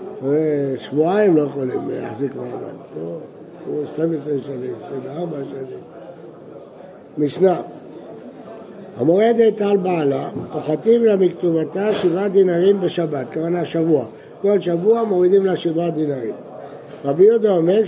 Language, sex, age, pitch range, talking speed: Hebrew, male, 60-79, 160-220 Hz, 100 wpm